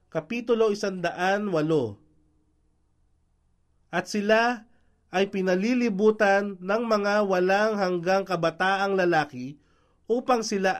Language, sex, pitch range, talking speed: Filipino, male, 155-220 Hz, 80 wpm